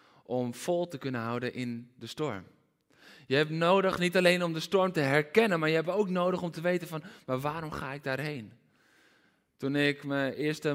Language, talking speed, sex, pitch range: Dutch, 200 wpm, male, 130-165 Hz